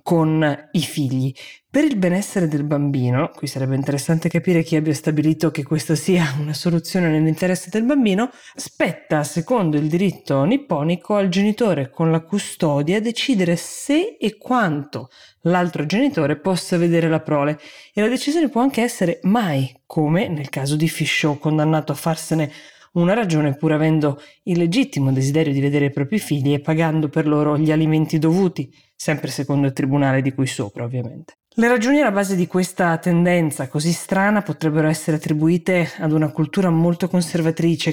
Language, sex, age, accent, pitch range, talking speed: Italian, female, 20-39, native, 150-180 Hz, 160 wpm